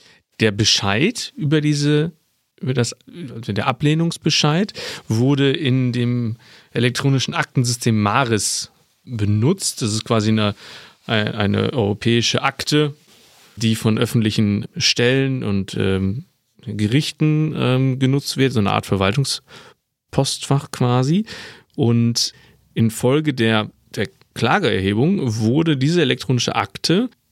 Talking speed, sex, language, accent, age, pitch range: 100 wpm, male, German, German, 40-59, 105-145 Hz